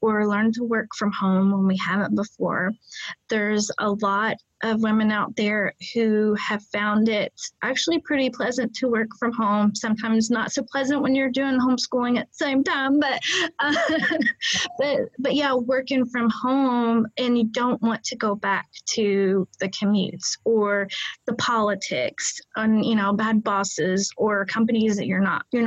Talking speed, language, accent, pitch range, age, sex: 170 wpm, English, American, 205-240 Hz, 30-49, female